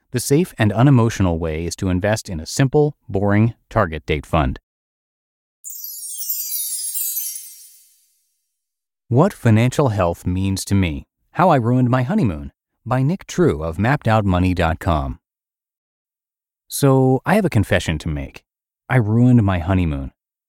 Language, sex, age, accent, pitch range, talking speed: English, male, 30-49, American, 85-125 Hz, 125 wpm